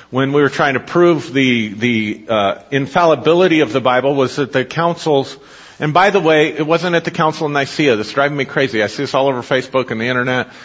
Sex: male